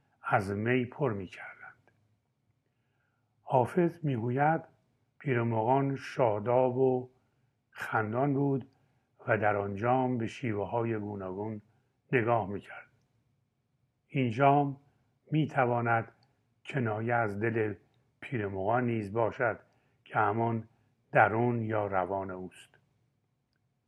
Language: Persian